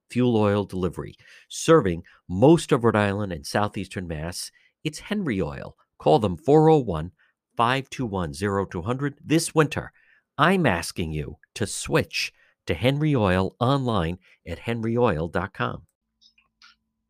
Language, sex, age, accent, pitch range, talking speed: English, male, 50-69, American, 100-145 Hz, 105 wpm